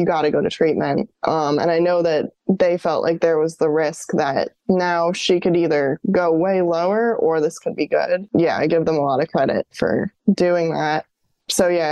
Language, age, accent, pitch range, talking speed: English, 20-39, American, 160-190 Hz, 220 wpm